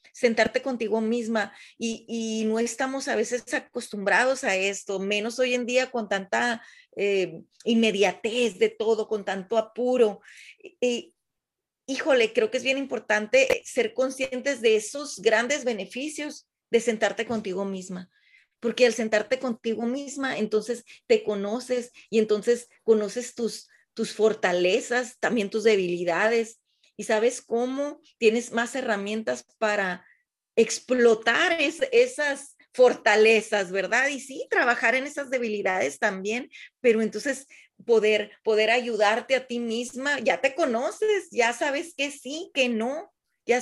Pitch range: 215-265 Hz